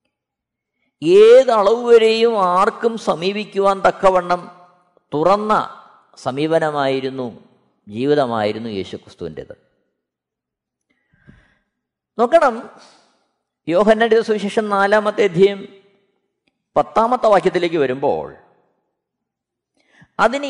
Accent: native